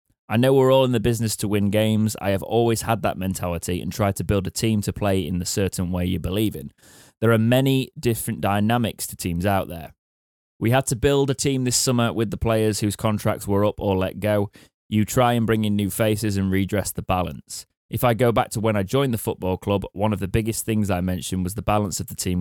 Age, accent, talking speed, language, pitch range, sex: 20-39, British, 250 wpm, English, 95-115 Hz, male